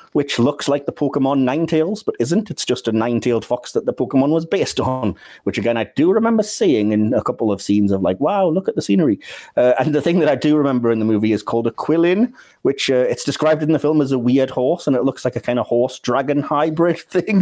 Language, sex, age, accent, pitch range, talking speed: English, male, 30-49, British, 110-150 Hz, 250 wpm